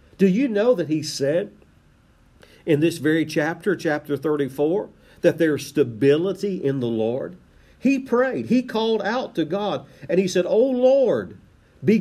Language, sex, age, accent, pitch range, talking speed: English, male, 50-69, American, 150-205 Hz, 160 wpm